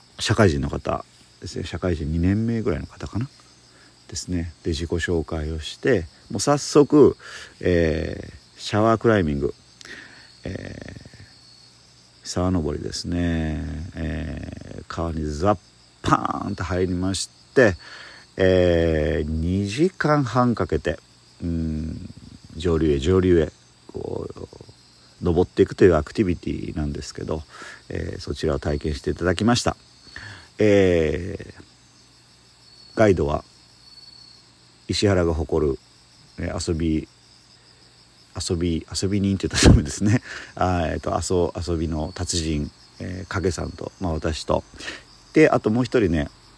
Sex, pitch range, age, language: male, 75-95 Hz, 40-59, Japanese